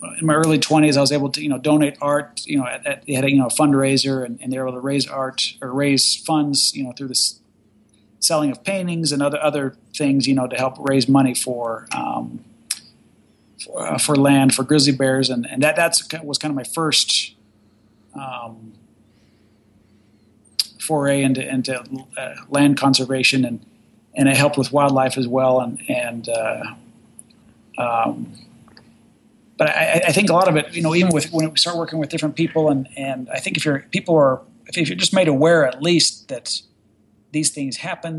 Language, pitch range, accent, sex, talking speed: English, 120-150 Hz, American, male, 200 wpm